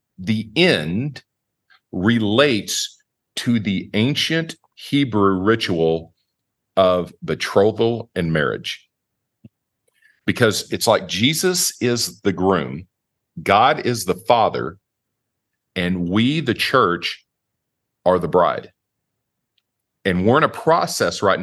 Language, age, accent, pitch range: English, 50-69, American, 80-115 Hz